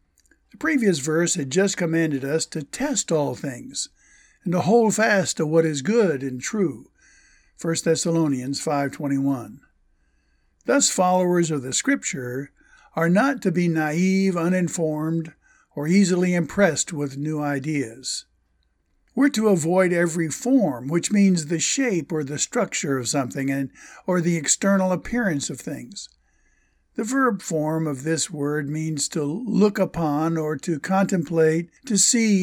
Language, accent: English, American